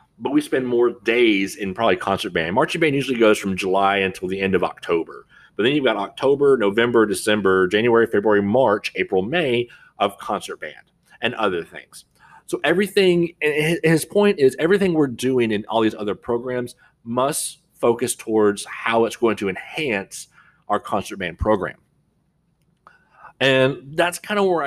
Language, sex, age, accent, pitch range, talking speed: English, male, 30-49, American, 100-130 Hz, 165 wpm